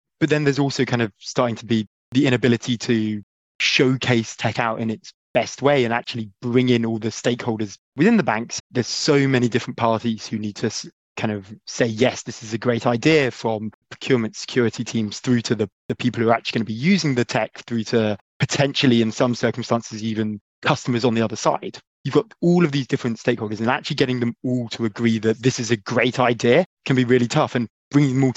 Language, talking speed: English, 220 wpm